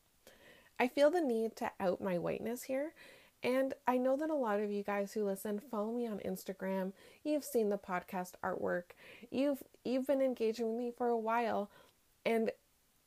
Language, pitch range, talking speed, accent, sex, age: English, 180-235 Hz, 180 wpm, American, female, 30-49